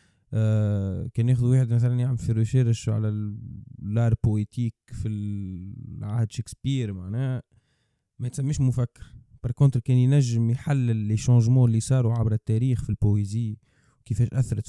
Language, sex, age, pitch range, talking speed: Arabic, male, 20-39, 110-130 Hz, 140 wpm